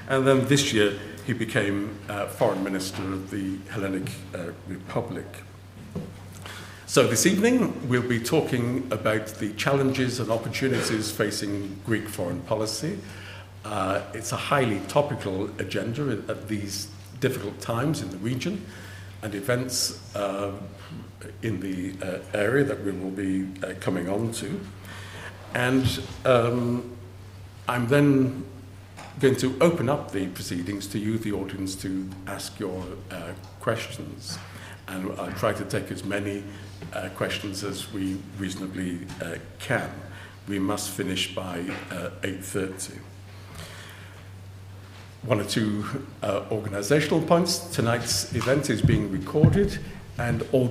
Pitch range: 95-115 Hz